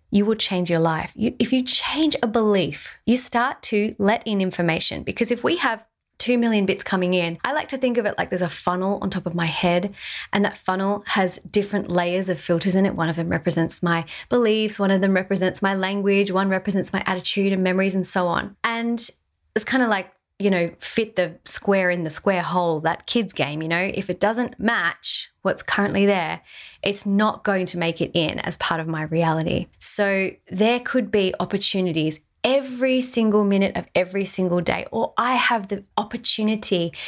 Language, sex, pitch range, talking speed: English, female, 180-225 Hz, 205 wpm